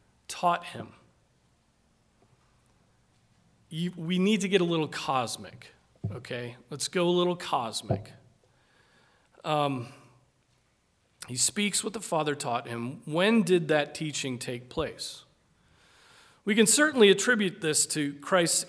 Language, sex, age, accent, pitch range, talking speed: English, male, 40-59, American, 150-210 Hz, 115 wpm